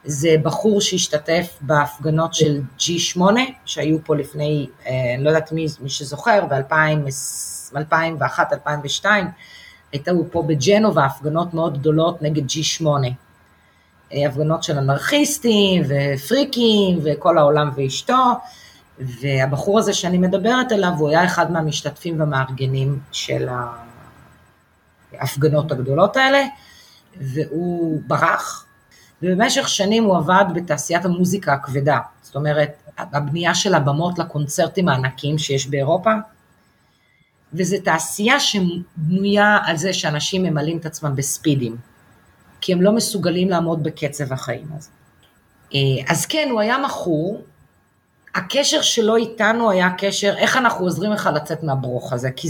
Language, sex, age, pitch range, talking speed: Hebrew, female, 30-49, 140-190 Hz, 115 wpm